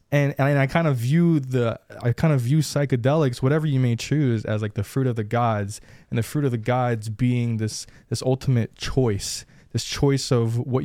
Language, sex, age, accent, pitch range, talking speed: English, male, 20-39, American, 105-130 Hz, 210 wpm